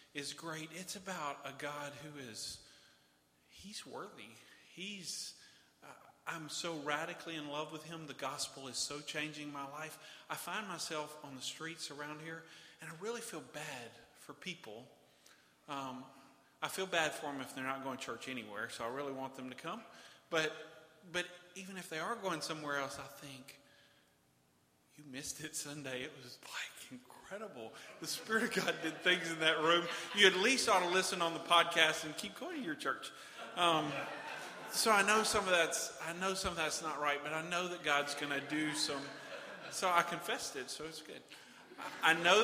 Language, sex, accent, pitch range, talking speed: English, male, American, 140-165 Hz, 185 wpm